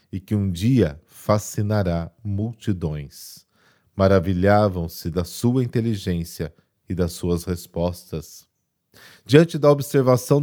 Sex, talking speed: male, 100 wpm